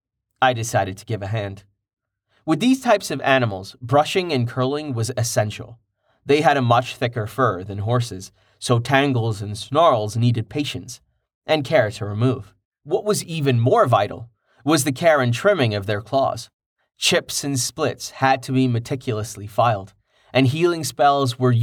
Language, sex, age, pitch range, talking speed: English, male, 30-49, 110-135 Hz, 165 wpm